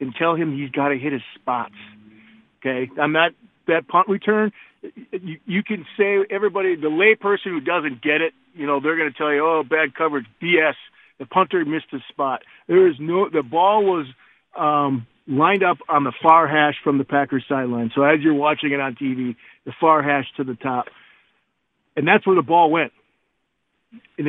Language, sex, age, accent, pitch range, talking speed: English, male, 50-69, American, 140-185 Hz, 195 wpm